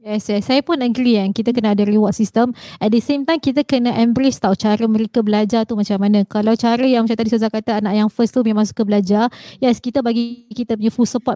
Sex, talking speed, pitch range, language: female, 245 wpm, 220-260 Hz, Malay